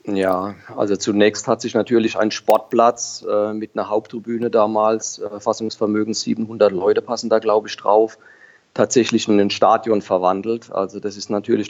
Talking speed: 160 wpm